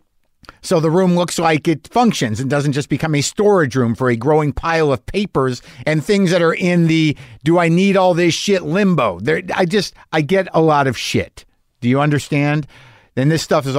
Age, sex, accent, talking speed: 50-69, male, American, 215 wpm